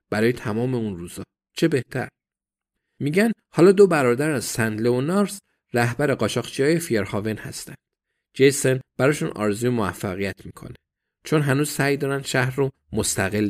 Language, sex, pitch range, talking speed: Persian, male, 105-140 Hz, 135 wpm